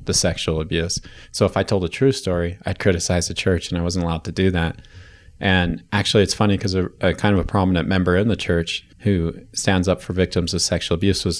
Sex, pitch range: male, 90-100 Hz